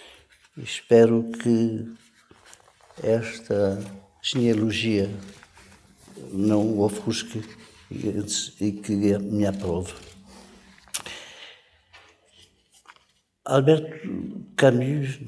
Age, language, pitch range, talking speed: 50-69, Portuguese, 100-120 Hz, 45 wpm